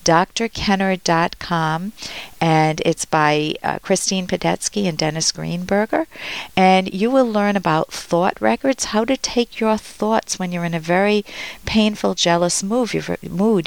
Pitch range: 175-225 Hz